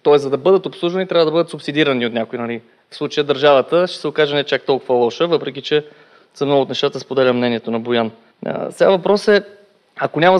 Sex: male